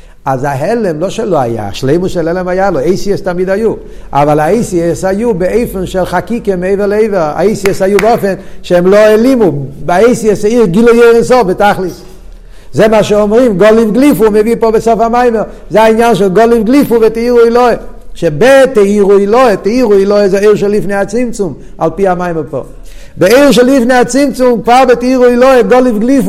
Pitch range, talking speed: 145-220 Hz, 155 wpm